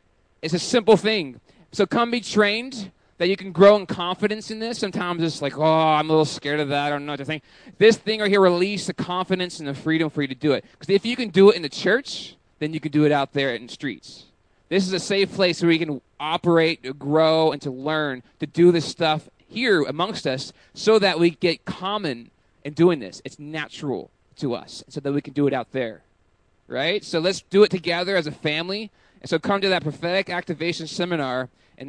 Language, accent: English, American